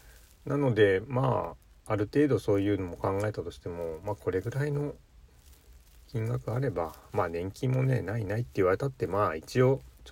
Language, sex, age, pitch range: Japanese, male, 40-59, 80-125 Hz